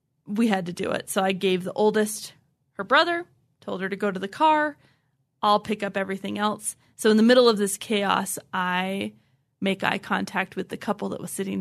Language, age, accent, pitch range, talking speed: English, 20-39, American, 170-225 Hz, 210 wpm